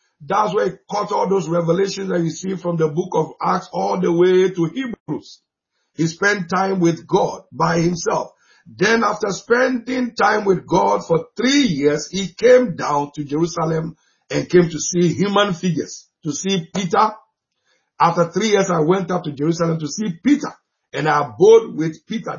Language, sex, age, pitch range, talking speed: English, male, 50-69, 155-200 Hz, 175 wpm